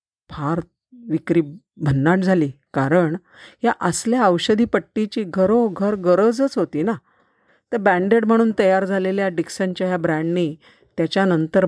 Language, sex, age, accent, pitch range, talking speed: Marathi, female, 50-69, native, 155-195 Hz, 120 wpm